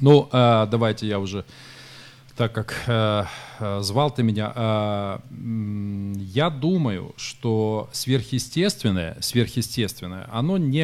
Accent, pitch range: native, 105-130 Hz